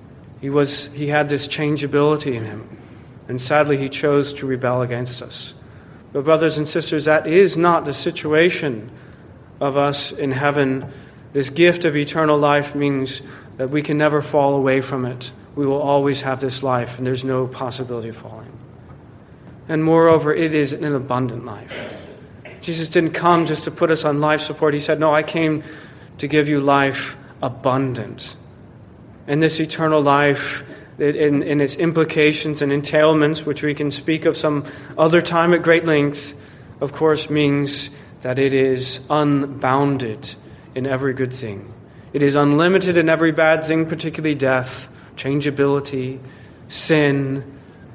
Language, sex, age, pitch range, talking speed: English, male, 40-59, 130-155 Hz, 155 wpm